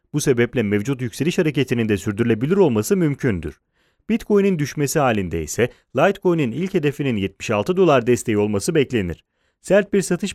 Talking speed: 140 wpm